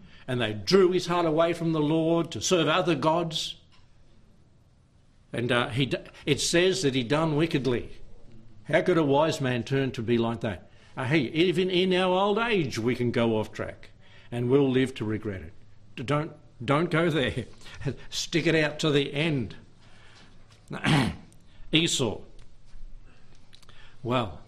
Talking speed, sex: 150 wpm, male